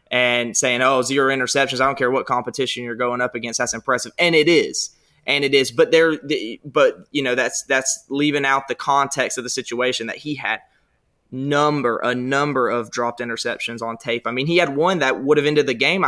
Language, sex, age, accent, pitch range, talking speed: English, male, 20-39, American, 125-145 Hz, 215 wpm